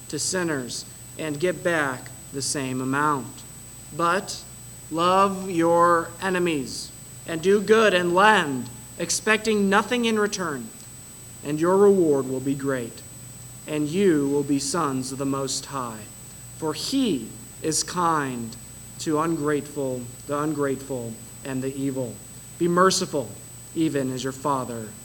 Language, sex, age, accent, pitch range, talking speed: English, male, 40-59, American, 135-190 Hz, 125 wpm